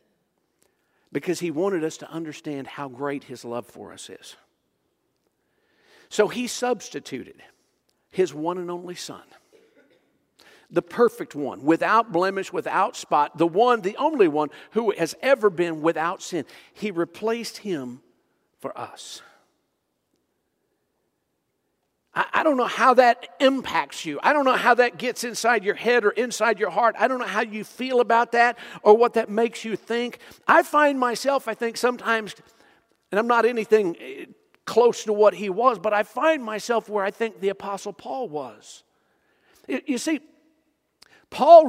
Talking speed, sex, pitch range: 155 wpm, male, 195-260 Hz